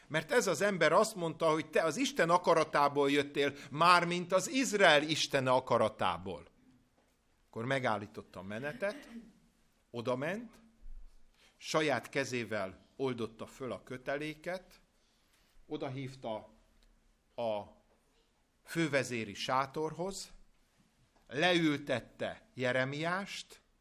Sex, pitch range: male, 120-165 Hz